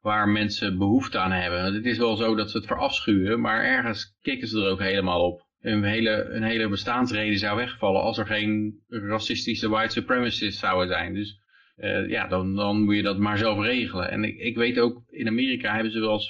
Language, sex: Dutch, male